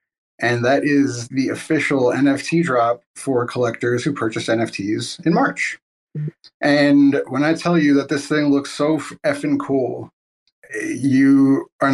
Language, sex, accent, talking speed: English, male, American, 140 wpm